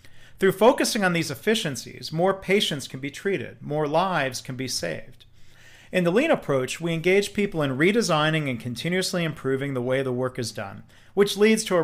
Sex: male